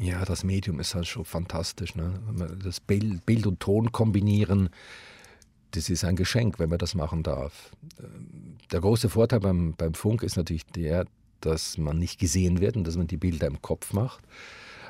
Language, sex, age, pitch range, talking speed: German, male, 50-69, 85-105 Hz, 175 wpm